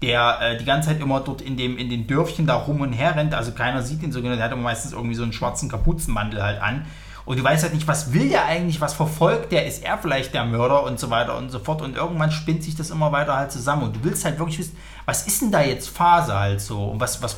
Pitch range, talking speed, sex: 125-160 Hz, 285 wpm, male